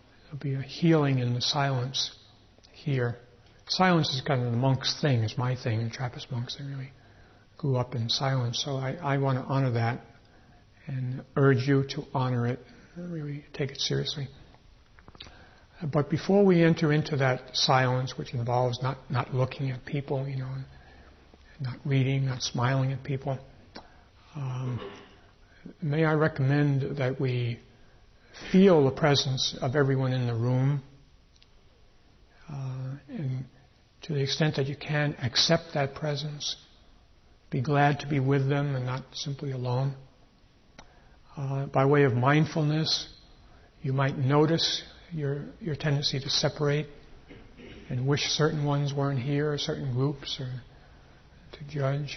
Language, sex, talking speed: English, male, 145 wpm